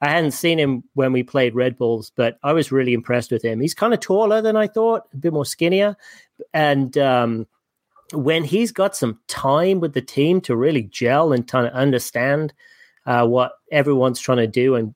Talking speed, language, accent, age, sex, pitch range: 205 wpm, English, British, 30-49, male, 115-145 Hz